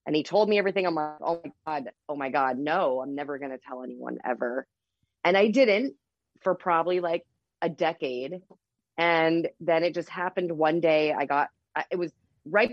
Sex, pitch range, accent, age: female, 155-195 Hz, American, 30-49